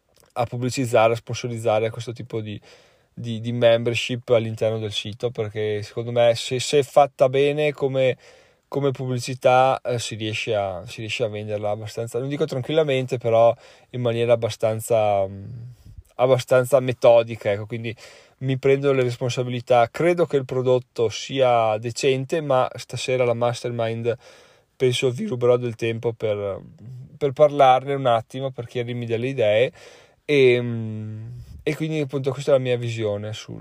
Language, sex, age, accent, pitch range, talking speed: Italian, male, 20-39, native, 115-140 Hz, 145 wpm